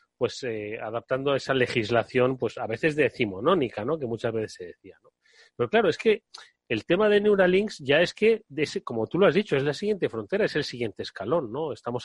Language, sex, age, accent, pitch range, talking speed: Spanish, male, 30-49, Spanish, 125-190 Hz, 225 wpm